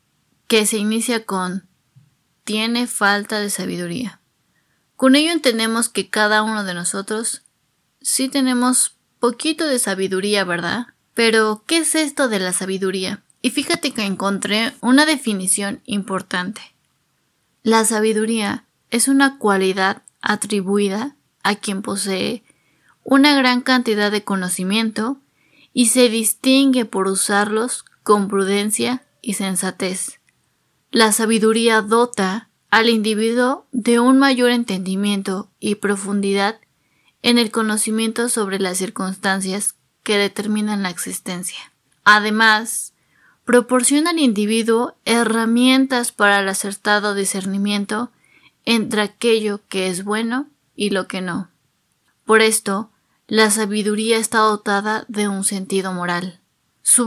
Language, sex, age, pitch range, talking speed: Spanish, female, 20-39, 195-240 Hz, 115 wpm